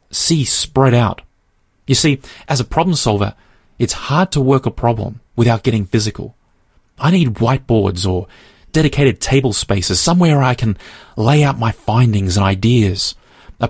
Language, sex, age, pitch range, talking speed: English, male, 30-49, 100-135 Hz, 155 wpm